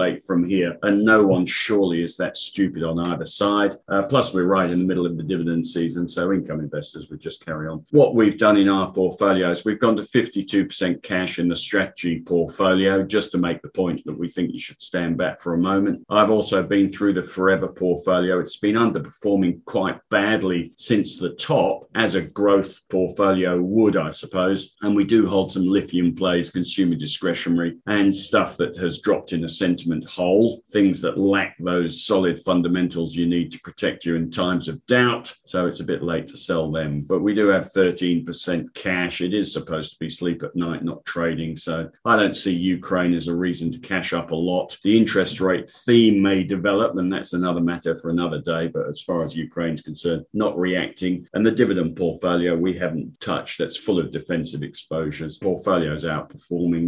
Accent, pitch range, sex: British, 85-95 Hz, male